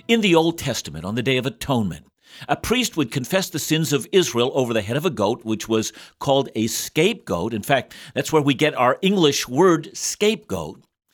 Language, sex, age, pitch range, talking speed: English, male, 50-69, 125-180 Hz, 205 wpm